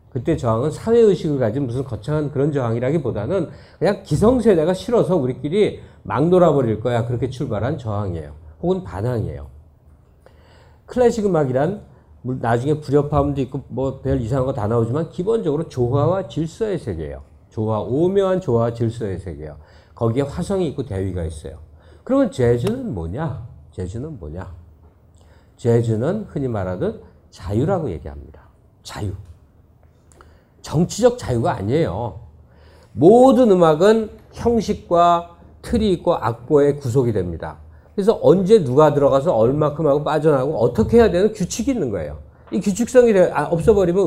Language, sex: Korean, male